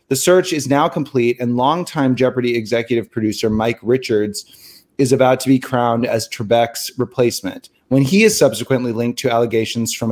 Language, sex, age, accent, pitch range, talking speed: English, male, 30-49, American, 115-135 Hz, 165 wpm